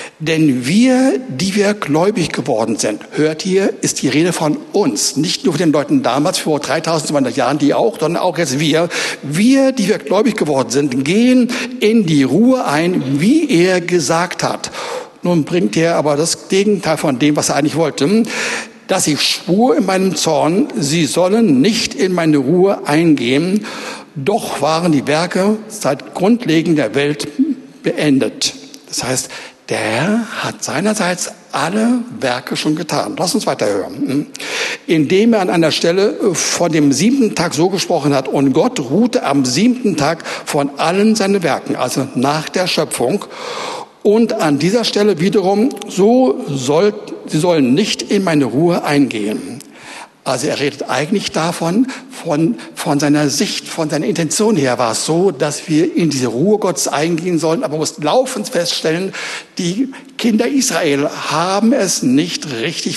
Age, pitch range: 60-79, 150-220 Hz